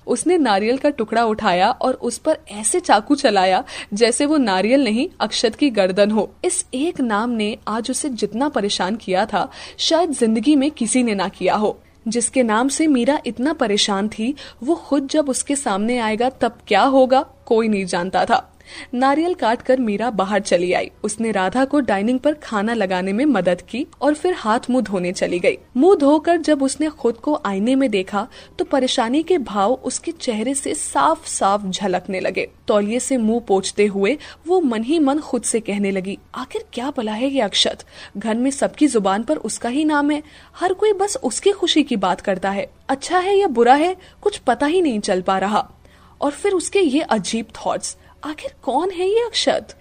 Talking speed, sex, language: 195 wpm, female, Hindi